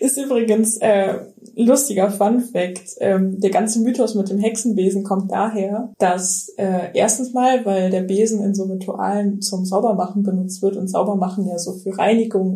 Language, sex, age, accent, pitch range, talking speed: German, female, 20-39, German, 200-225 Hz, 165 wpm